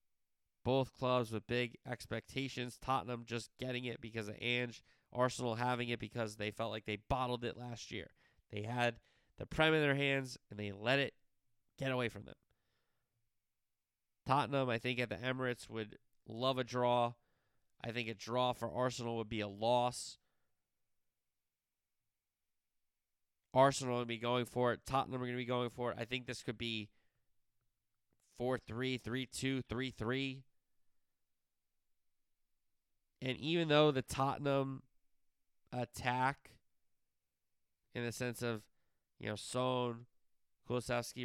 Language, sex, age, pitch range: English, male, 20-39, 110-125 Hz